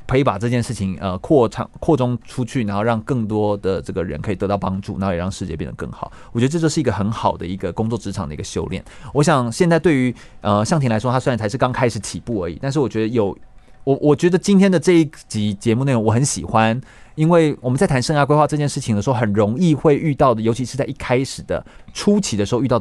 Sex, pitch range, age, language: male, 105-140 Hz, 30-49, Chinese